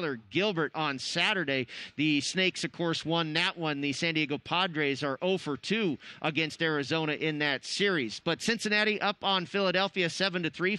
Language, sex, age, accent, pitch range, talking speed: English, male, 30-49, American, 155-185 Hz, 160 wpm